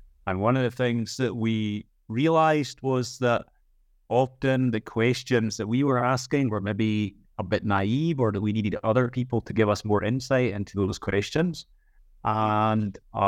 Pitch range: 100-120 Hz